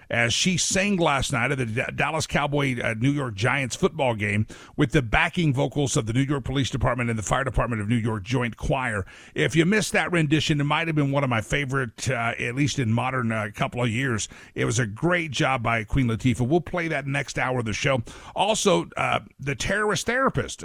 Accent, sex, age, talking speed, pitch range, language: American, male, 50-69, 225 wpm, 125-180 Hz, English